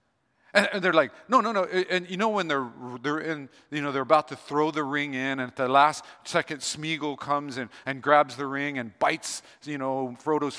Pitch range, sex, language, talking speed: 115-170 Hz, male, English, 220 wpm